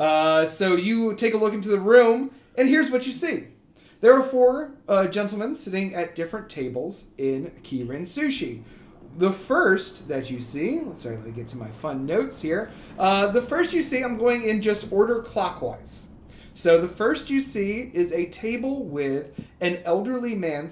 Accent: American